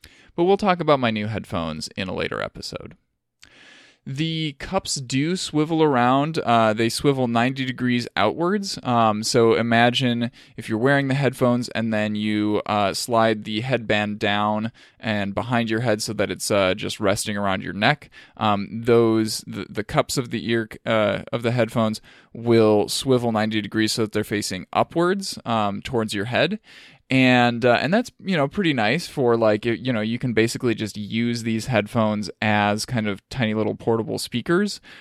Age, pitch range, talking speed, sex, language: 20-39, 105-130 Hz, 175 wpm, male, English